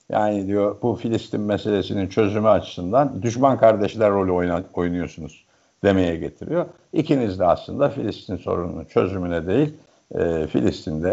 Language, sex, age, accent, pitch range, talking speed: Turkish, male, 60-79, native, 90-115 Hz, 115 wpm